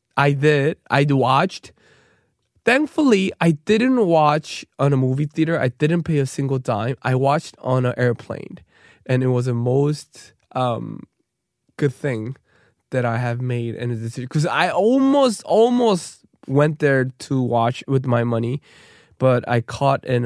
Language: Korean